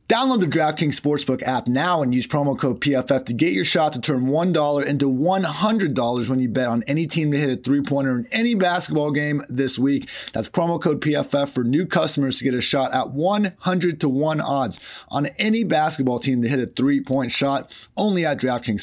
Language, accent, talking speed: English, American, 205 wpm